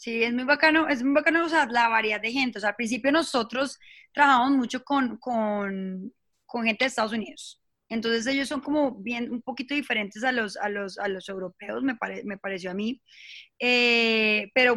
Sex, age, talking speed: female, 20-39, 200 wpm